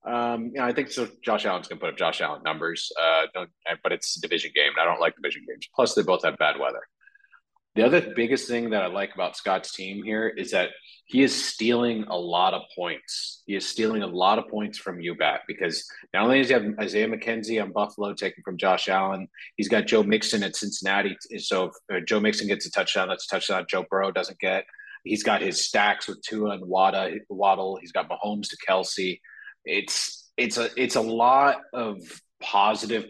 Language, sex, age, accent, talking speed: English, male, 30-49, American, 215 wpm